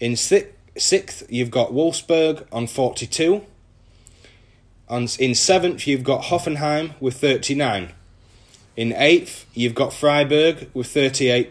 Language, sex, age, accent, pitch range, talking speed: English, male, 30-49, British, 115-150 Hz, 115 wpm